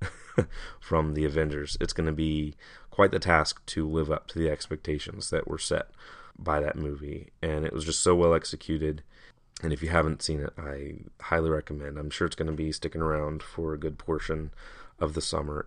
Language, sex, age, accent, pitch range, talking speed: English, male, 30-49, American, 75-90 Hz, 205 wpm